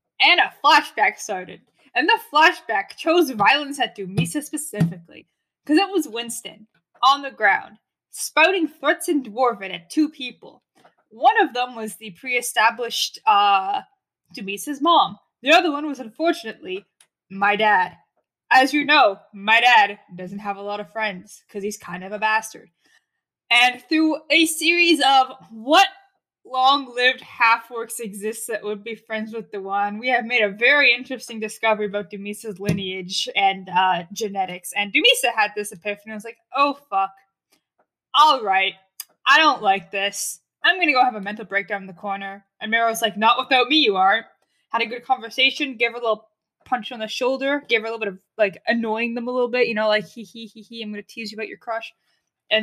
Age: 20-39